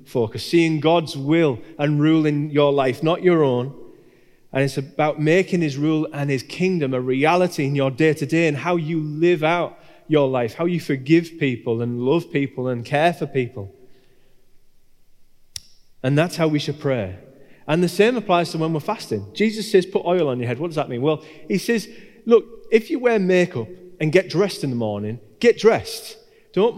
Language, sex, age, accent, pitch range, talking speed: English, male, 30-49, British, 140-205 Hz, 195 wpm